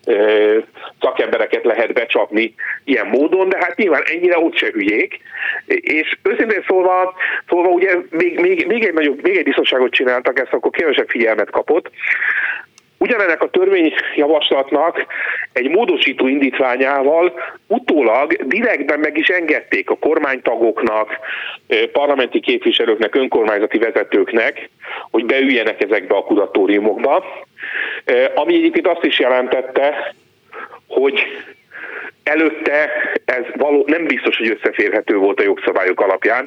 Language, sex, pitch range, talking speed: Hungarian, male, 310-445 Hz, 115 wpm